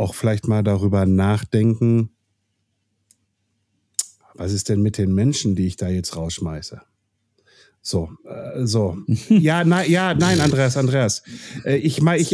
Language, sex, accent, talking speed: German, male, German, 125 wpm